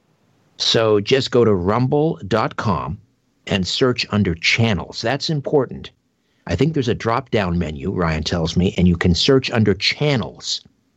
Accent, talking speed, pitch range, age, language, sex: American, 140 wpm, 90-125 Hz, 60-79, English, male